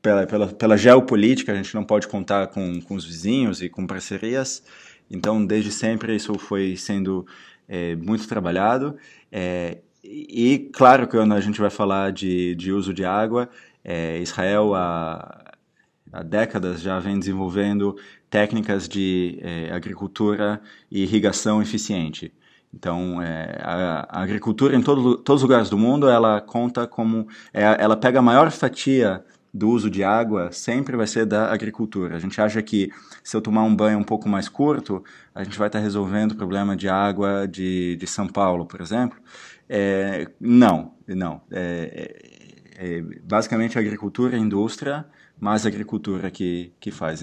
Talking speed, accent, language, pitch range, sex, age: 165 wpm, Brazilian, Portuguese, 95-110 Hz, male, 20-39